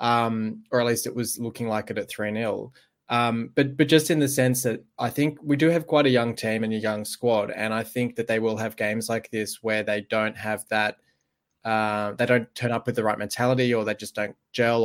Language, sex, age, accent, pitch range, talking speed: English, male, 20-39, Australian, 105-125 Hz, 245 wpm